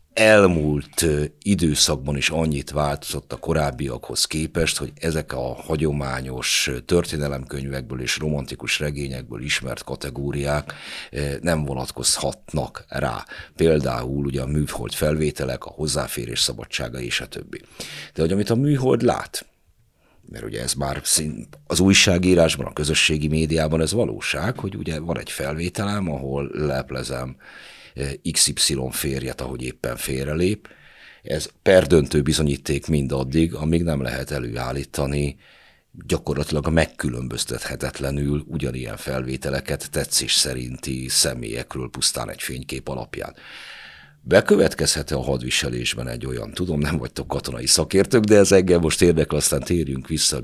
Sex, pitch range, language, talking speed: male, 65-80 Hz, Hungarian, 115 wpm